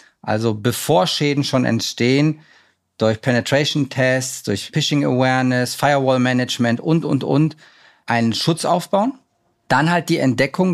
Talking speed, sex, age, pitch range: 130 wpm, male, 40-59, 125-155 Hz